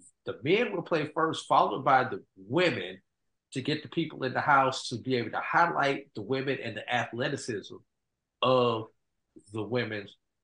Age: 50-69